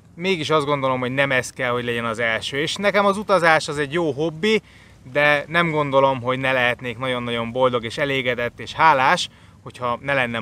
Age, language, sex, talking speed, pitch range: 20-39, Hungarian, male, 195 wpm, 125-170 Hz